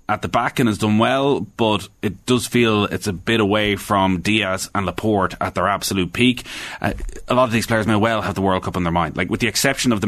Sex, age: male, 30-49